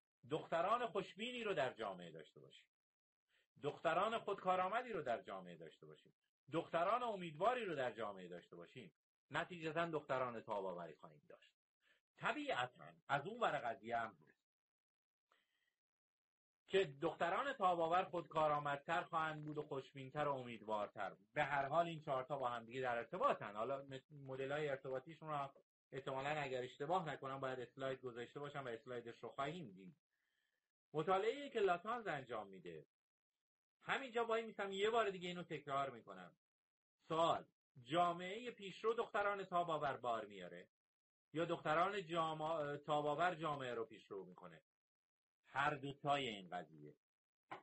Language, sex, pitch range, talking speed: Persian, male, 125-170 Hz, 125 wpm